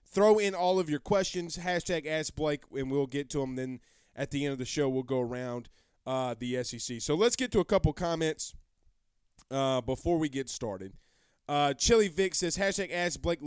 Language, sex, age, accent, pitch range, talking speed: English, male, 20-39, American, 130-195 Hz, 195 wpm